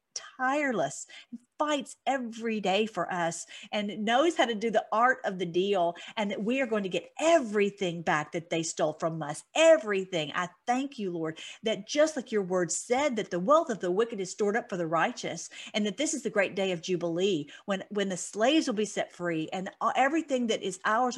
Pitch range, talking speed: 180-230 Hz, 215 wpm